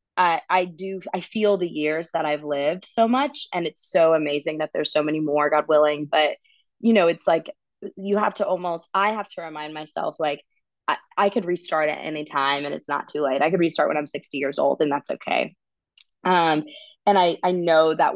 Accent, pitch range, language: American, 150-190 Hz, English